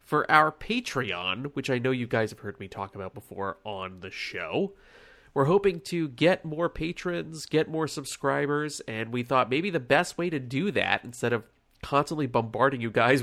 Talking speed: 190 wpm